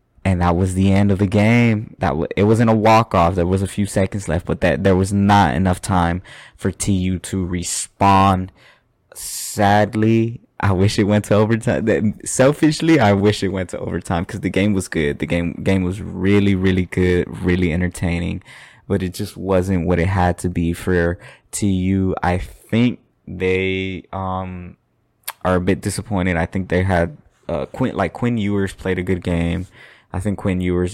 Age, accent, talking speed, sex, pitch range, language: 20-39, American, 190 wpm, male, 90-100 Hz, English